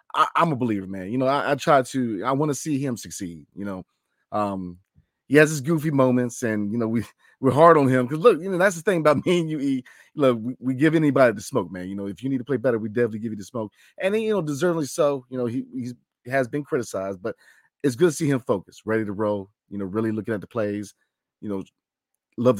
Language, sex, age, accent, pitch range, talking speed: English, male, 30-49, American, 115-150 Hz, 270 wpm